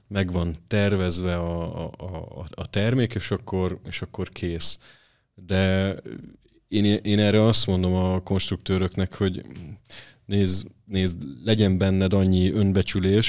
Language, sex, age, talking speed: Hungarian, male, 30-49, 125 wpm